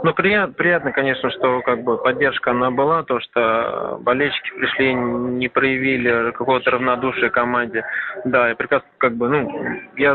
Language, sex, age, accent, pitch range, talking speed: Russian, male, 20-39, native, 115-135 Hz, 155 wpm